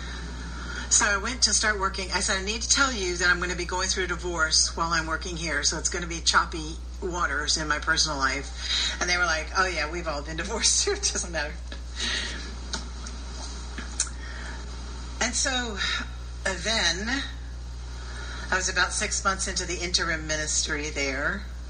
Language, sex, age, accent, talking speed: English, female, 40-59, American, 175 wpm